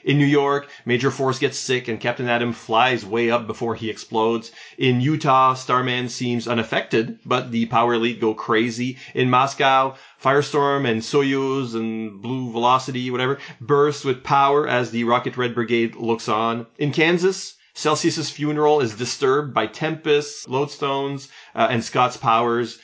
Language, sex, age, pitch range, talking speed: English, male, 30-49, 115-145 Hz, 155 wpm